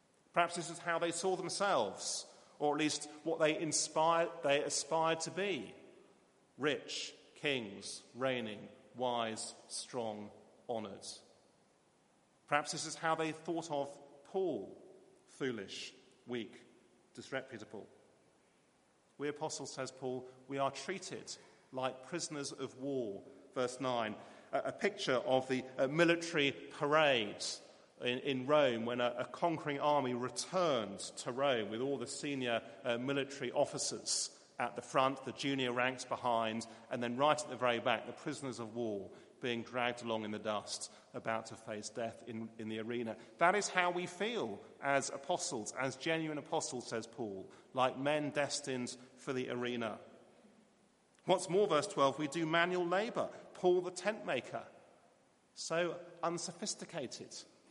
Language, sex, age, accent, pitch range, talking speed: English, male, 40-59, British, 120-160 Hz, 140 wpm